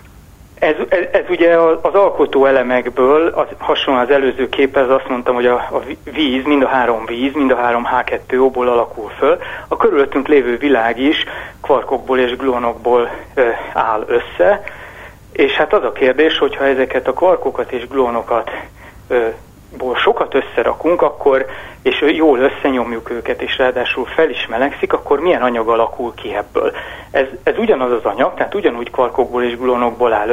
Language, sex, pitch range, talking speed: Hungarian, male, 120-140 Hz, 160 wpm